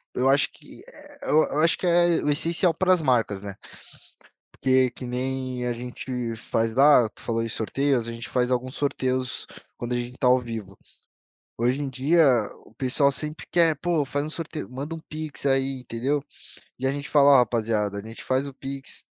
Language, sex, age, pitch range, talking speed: Portuguese, male, 20-39, 110-140 Hz, 180 wpm